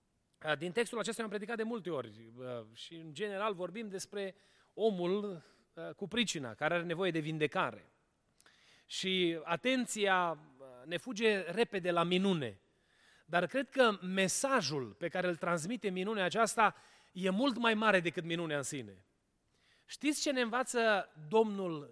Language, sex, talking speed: Romanian, male, 140 wpm